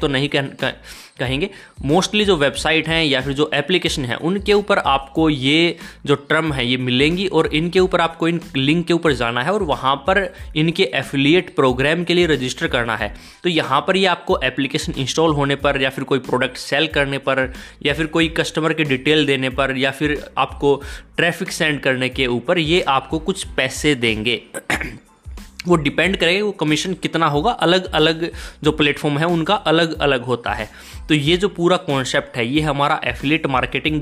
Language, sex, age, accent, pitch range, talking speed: Hindi, male, 20-39, native, 135-165 Hz, 190 wpm